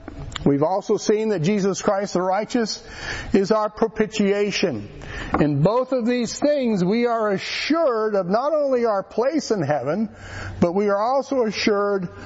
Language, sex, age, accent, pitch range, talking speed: English, male, 50-69, American, 175-230 Hz, 150 wpm